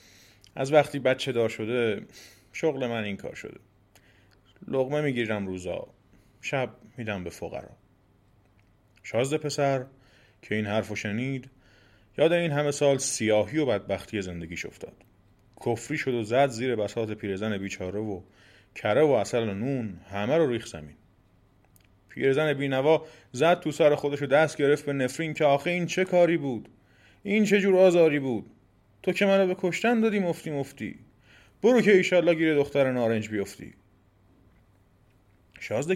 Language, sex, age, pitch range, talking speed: Persian, male, 30-49, 105-155 Hz, 150 wpm